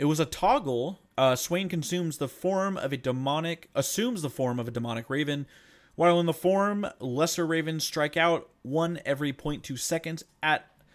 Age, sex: 30-49, male